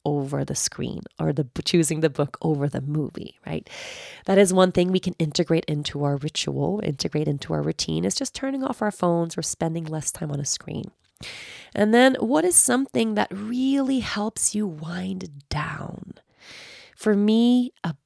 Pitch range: 155-225 Hz